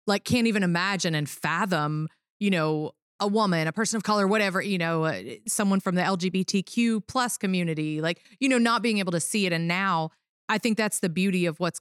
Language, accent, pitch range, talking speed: English, American, 165-215 Hz, 215 wpm